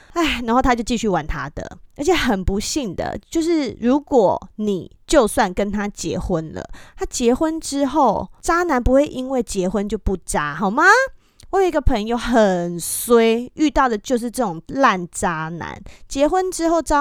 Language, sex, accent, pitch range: Chinese, female, American, 210-305 Hz